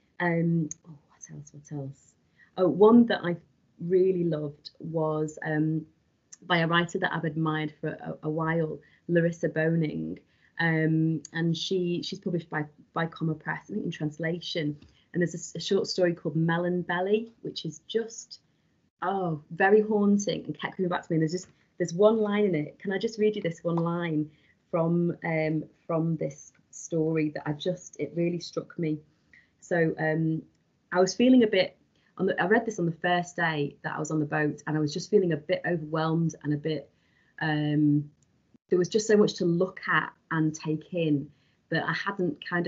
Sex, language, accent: female, English, British